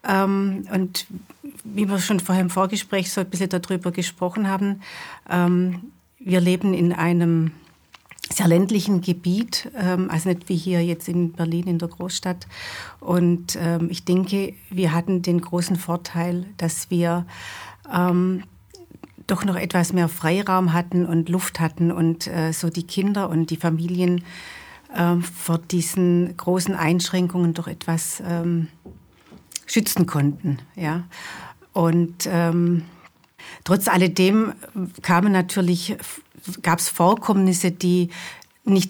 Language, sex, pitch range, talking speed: German, female, 165-185 Hz, 125 wpm